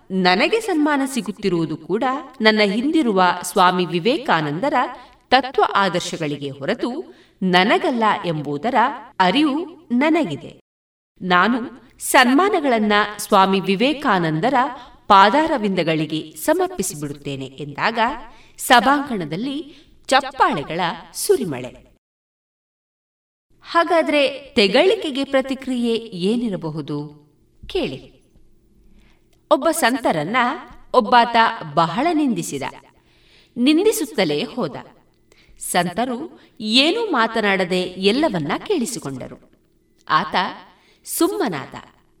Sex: female